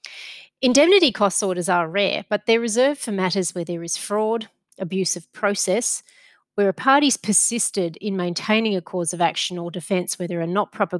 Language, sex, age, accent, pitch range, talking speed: English, female, 30-49, Australian, 175-220 Hz, 185 wpm